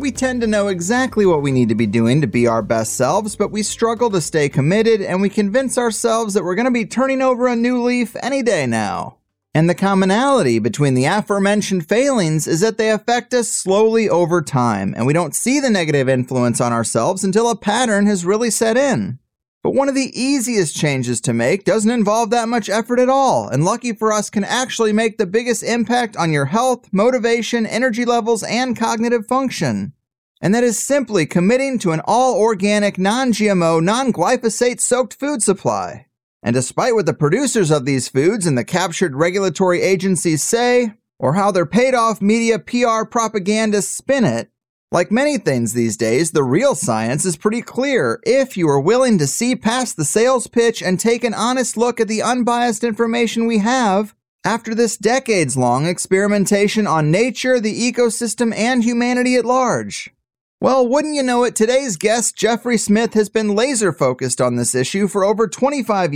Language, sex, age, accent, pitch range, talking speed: English, male, 30-49, American, 175-240 Hz, 180 wpm